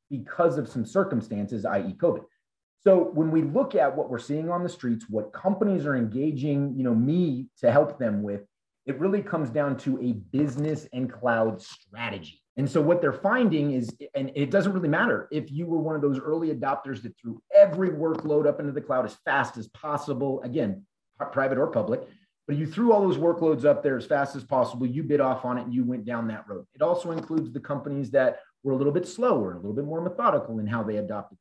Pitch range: 120-160 Hz